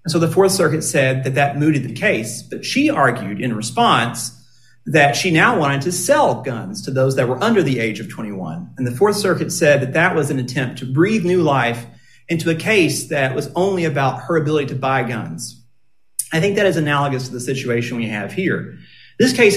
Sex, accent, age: male, American, 40-59